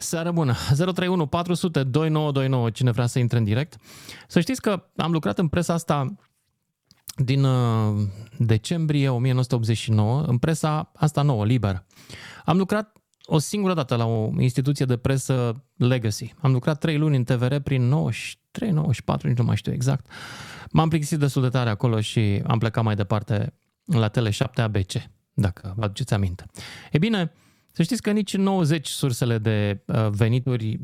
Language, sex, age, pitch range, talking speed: Romanian, male, 30-49, 115-155 Hz, 150 wpm